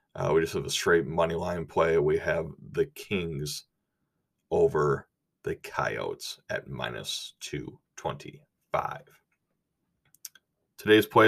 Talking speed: 110 wpm